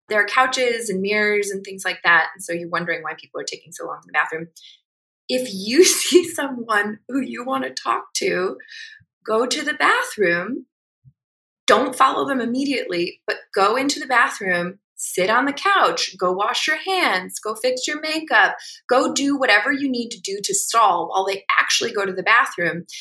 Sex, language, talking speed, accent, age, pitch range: female, English, 190 wpm, American, 20-39, 185-285 Hz